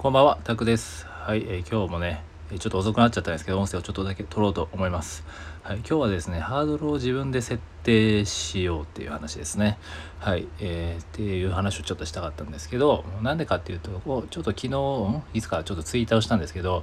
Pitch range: 80-115 Hz